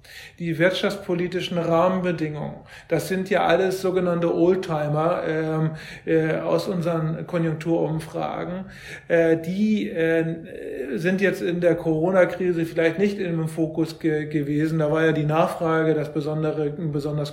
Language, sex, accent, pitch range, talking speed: German, male, German, 150-170 Hz, 120 wpm